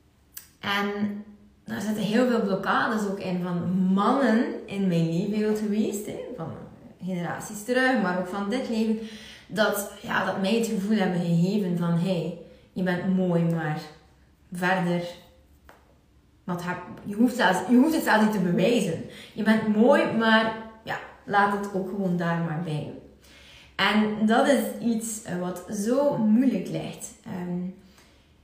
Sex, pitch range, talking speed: female, 180-220 Hz, 150 wpm